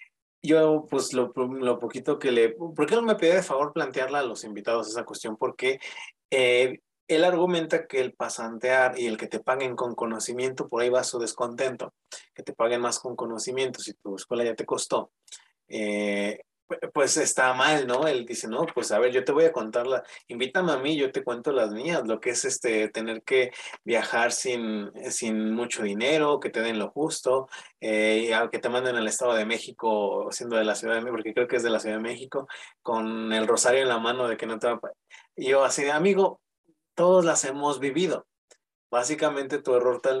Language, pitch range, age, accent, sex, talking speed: Spanish, 115-150 Hz, 30-49, Mexican, male, 205 wpm